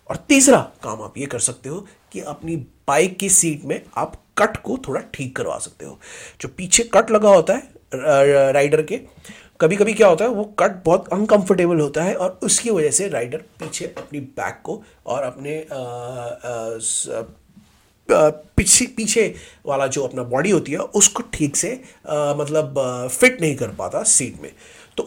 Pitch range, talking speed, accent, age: 145-215 Hz, 175 wpm, native, 30-49